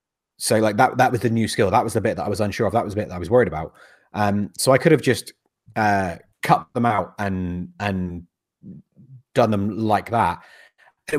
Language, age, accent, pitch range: English, 30-49, British, 100-120 Hz